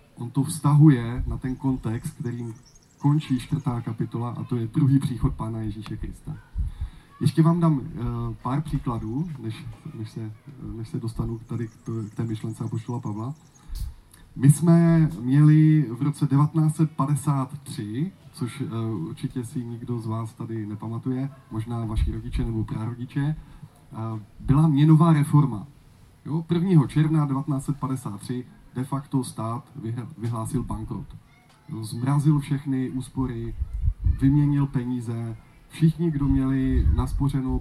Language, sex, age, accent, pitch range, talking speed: Czech, male, 20-39, native, 115-145 Hz, 115 wpm